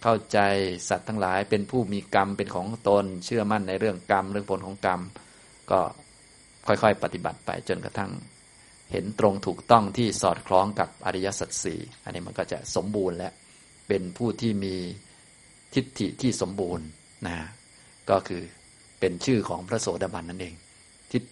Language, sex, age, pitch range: Thai, male, 20-39, 95-110 Hz